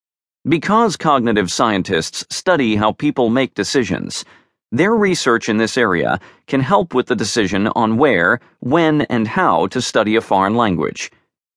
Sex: male